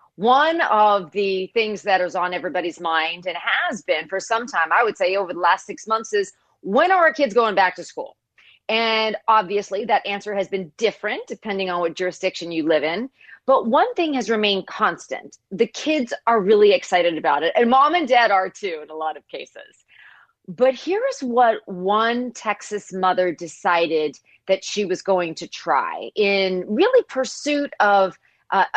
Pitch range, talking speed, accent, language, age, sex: 185-245 Hz, 185 wpm, American, English, 40-59, female